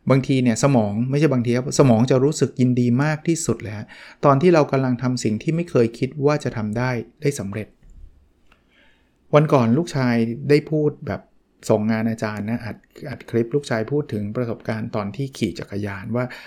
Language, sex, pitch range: Thai, male, 110-140 Hz